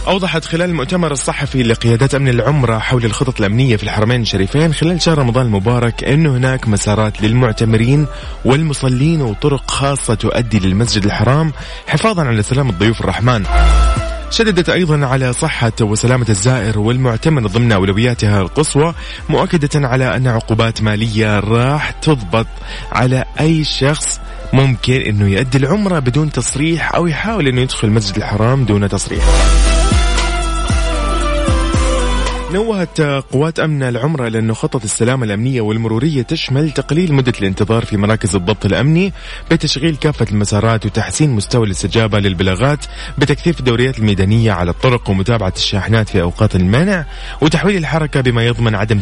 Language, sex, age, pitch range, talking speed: Arabic, male, 20-39, 110-145 Hz, 130 wpm